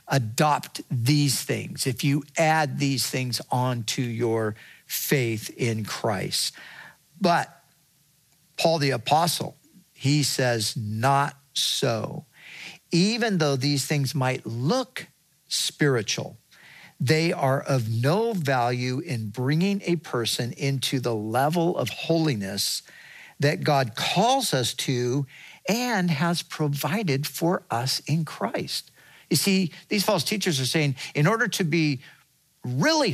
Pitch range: 135-175 Hz